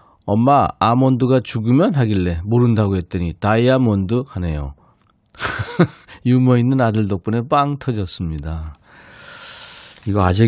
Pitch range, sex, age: 95-130 Hz, male, 40-59